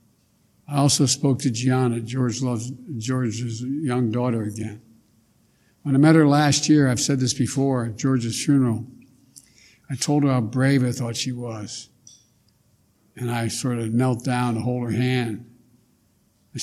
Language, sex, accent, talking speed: English, male, American, 160 wpm